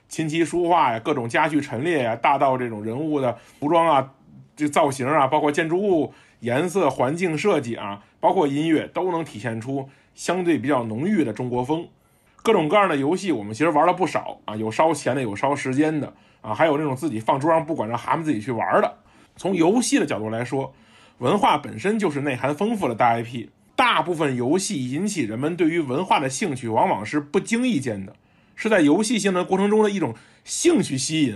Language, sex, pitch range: Chinese, male, 130-195 Hz